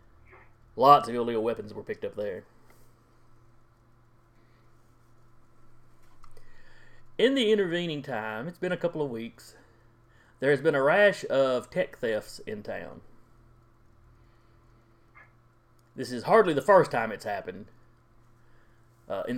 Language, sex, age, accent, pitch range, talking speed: English, male, 30-49, American, 115-120 Hz, 120 wpm